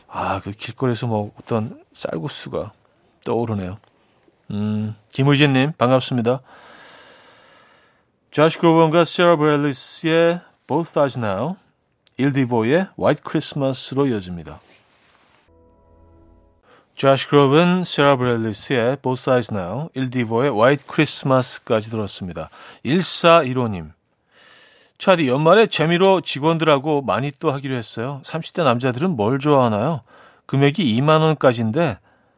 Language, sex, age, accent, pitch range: Korean, male, 40-59, native, 115-170 Hz